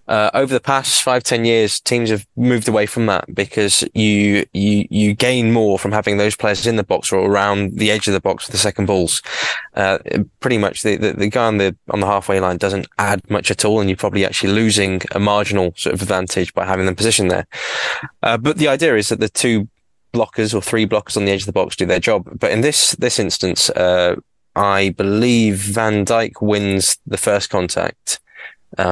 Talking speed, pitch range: 220 wpm, 95-110 Hz